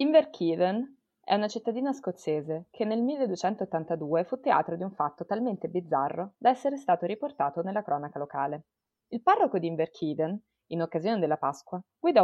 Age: 20-39